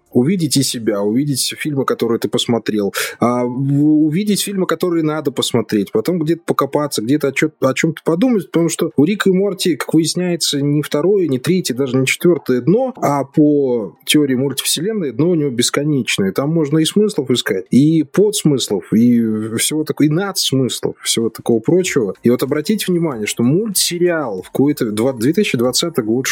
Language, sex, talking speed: Russian, male, 160 wpm